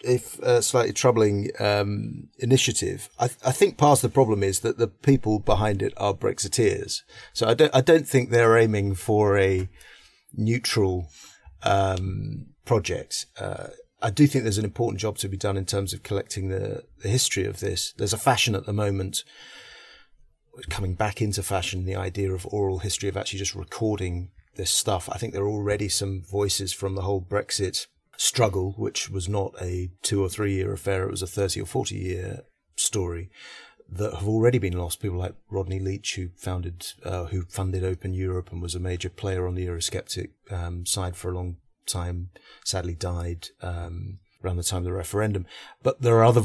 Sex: male